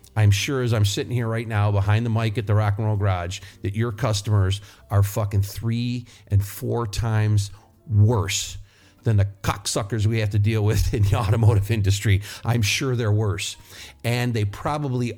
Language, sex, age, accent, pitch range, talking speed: English, male, 50-69, American, 100-120 Hz, 180 wpm